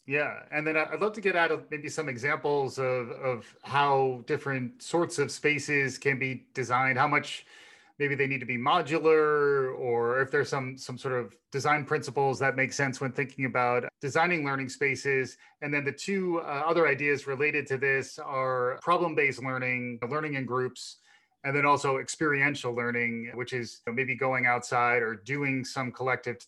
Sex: male